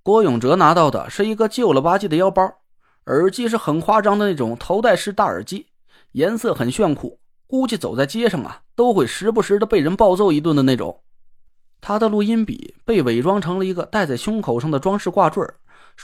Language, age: Chinese, 20-39